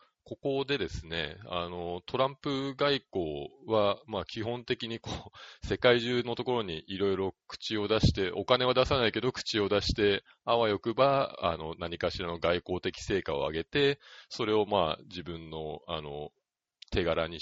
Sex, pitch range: male, 85-115 Hz